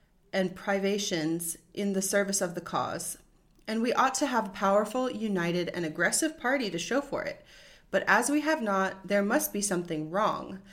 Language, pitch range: English, 180-245 Hz